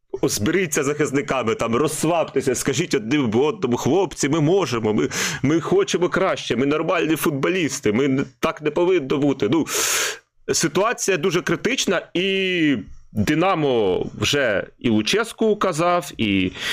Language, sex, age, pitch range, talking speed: Ukrainian, male, 30-49, 115-165 Hz, 120 wpm